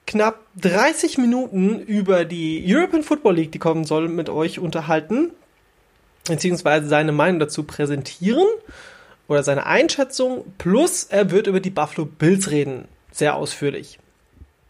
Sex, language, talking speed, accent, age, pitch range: male, German, 130 wpm, German, 30-49, 150-215 Hz